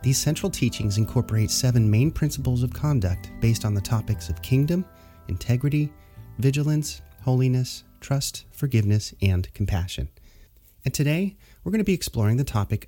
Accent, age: American, 30-49